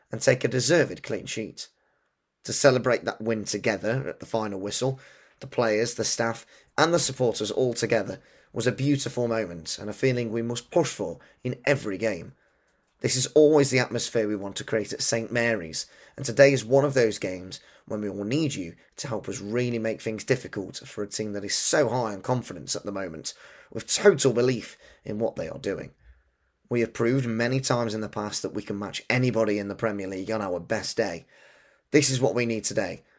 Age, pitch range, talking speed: 30-49, 105-130 Hz, 210 wpm